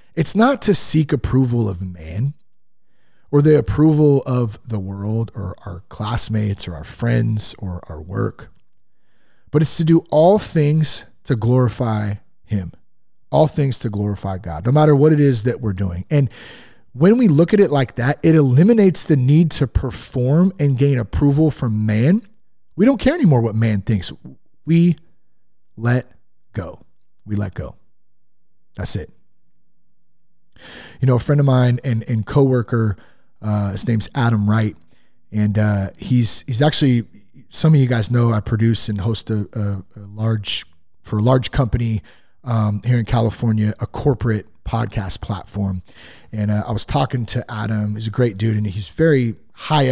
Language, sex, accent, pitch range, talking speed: English, male, American, 105-135 Hz, 165 wpm